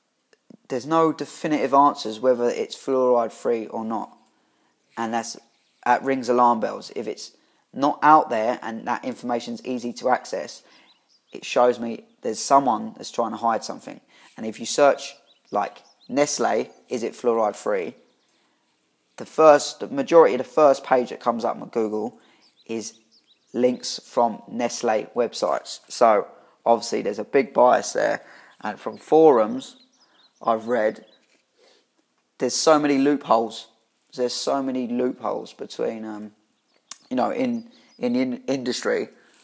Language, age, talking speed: English, 20-39, 140 wpm